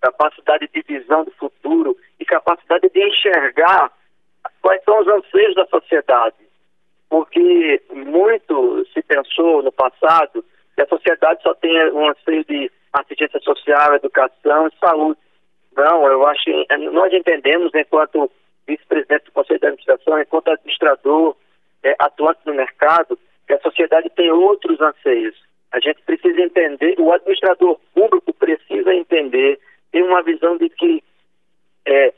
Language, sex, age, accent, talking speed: Portuguese, male, 40-59, Brazilian, 135 wpm